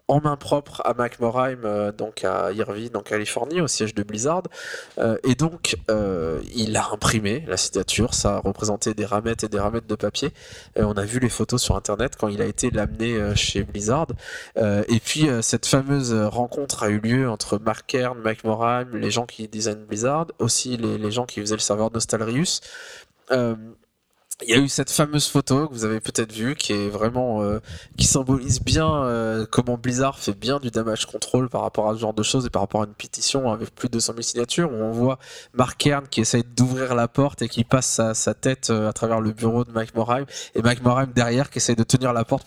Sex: male